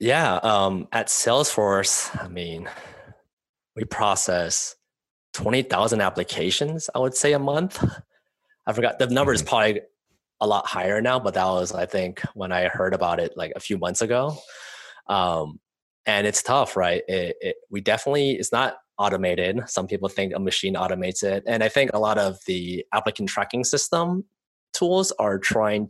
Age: 20-39